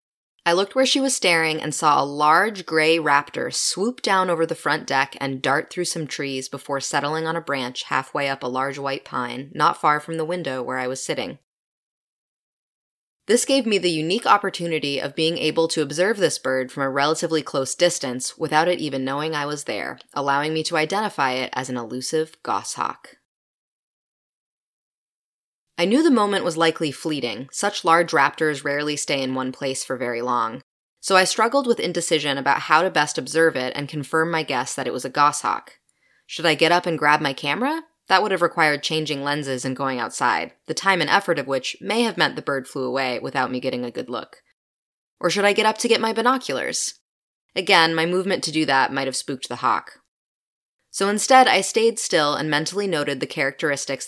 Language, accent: English, American